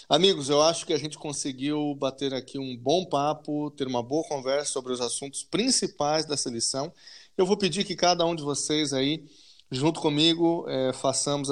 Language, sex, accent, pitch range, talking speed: Portuguese, male, Brazilian, 130-155 Hz, 175 wpm